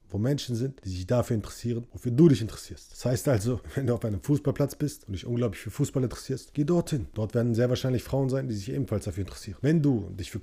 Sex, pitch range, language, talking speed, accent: male, 100-130 Hz, German, 245 wpm, German